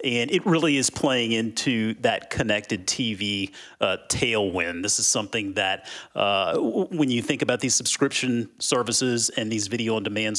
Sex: male